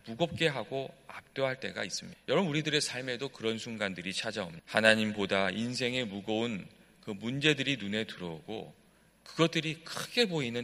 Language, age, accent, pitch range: Korean, 40-59, native, 110-170 Hz